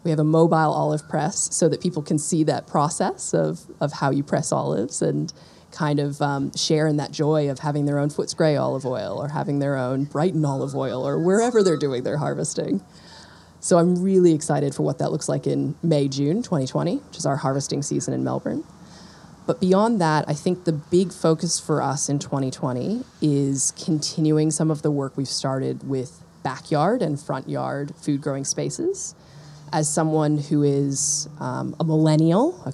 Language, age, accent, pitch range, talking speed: English, 20-39, American, 140-165 Hz, 190 wpm